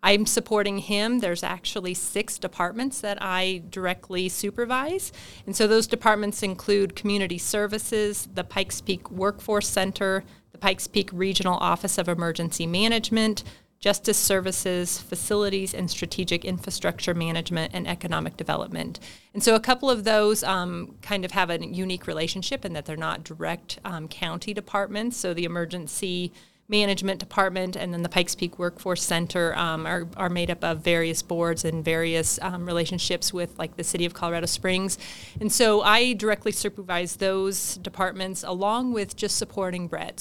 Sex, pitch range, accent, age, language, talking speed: female, 175-205 Hz, American, 30-49, English, 155 wpm